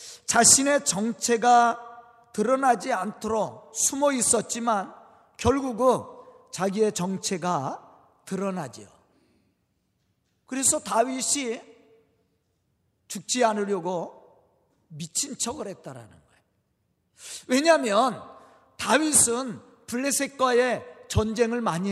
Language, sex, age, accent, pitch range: Korean, male, 40-59, native, 185-285 Hz